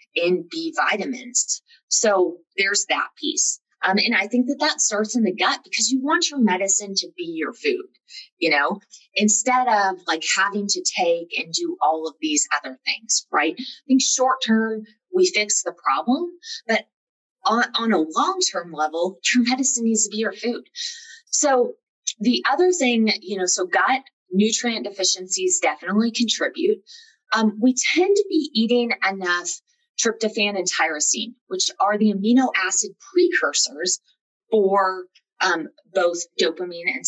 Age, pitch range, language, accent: 20-39, 190-300 Hz, English, American